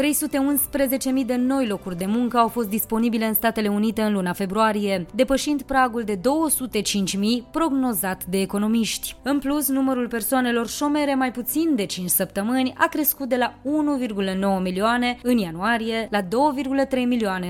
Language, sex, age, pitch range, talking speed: Romanian, female, 20-39, 200-260 Hz, 145 wpm